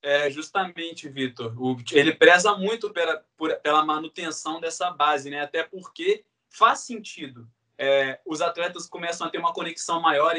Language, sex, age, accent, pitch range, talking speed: Portuguese, male, 20-39, Brazilian, 145-175 Hz, 140 wpm